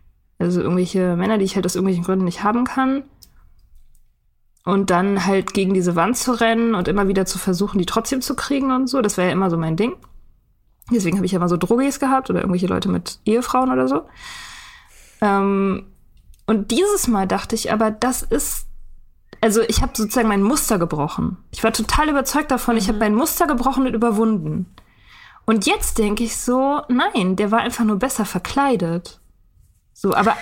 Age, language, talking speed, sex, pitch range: 20-39, German, 185 wpm, female, 190-250 Hz